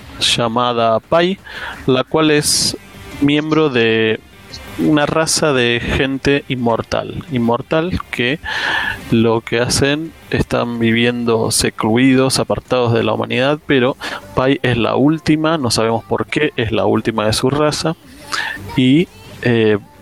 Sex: male